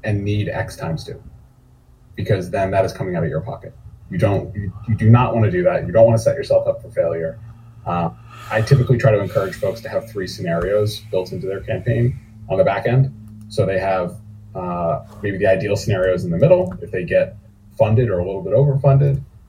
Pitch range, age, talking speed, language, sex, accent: 100-135 Hz, 30-49, 220 wpm, English, male, American